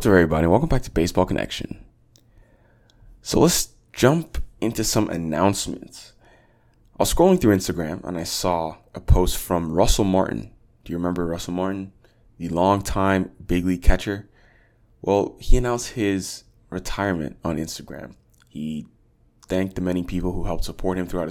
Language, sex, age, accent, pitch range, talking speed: English, male, 20-39, American, 85-110 Hz, 145 wpm